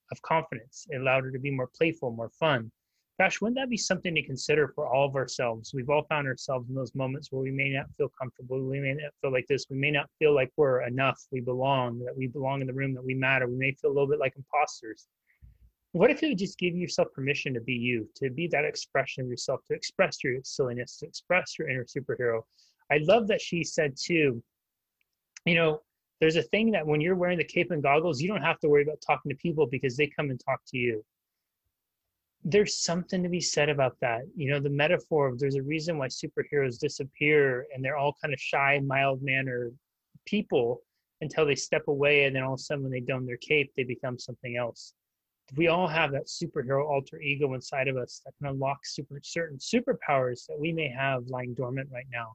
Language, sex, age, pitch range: English, male, 30-49, 130-155 Hz